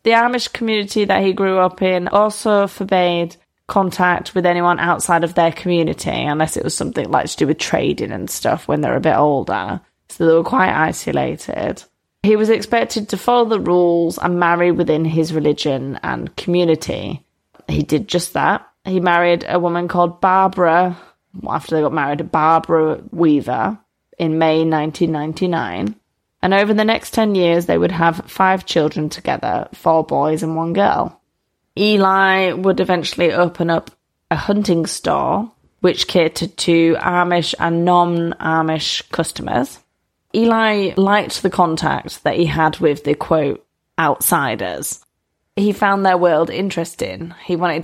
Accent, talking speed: British, 155 wpm